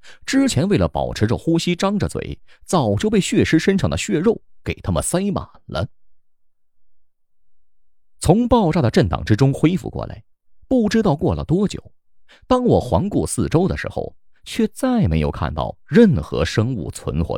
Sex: male